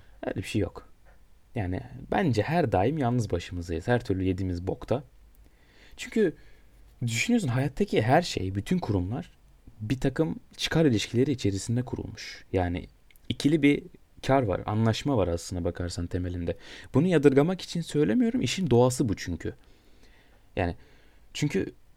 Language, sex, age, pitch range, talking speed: Turkish, male, 30-49, 100-145 Hz, 130 wpm